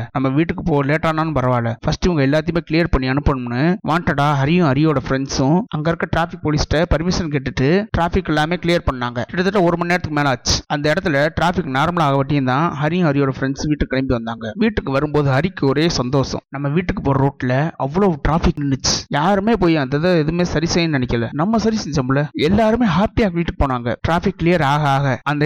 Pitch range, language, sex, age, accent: 135-180 Hz, Tamil, male, 30-49, native